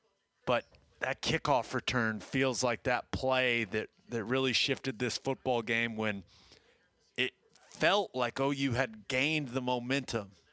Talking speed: 135 wpm